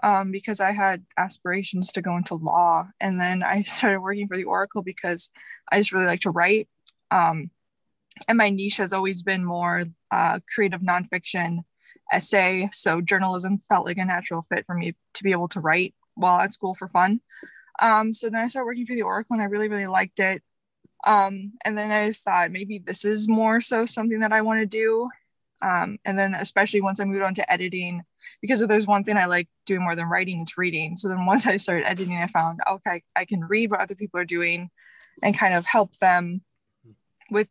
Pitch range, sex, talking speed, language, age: 175-205 Hz, female, 210 wpm, English, 20-39